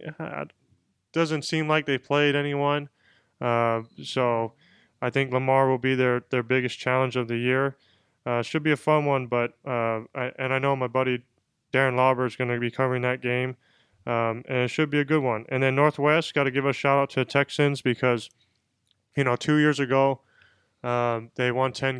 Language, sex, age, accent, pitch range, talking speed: English, male, 20-39, American, 120-135 Hz, 200 wpm